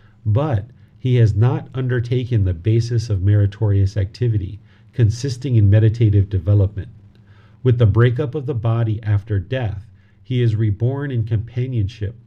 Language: English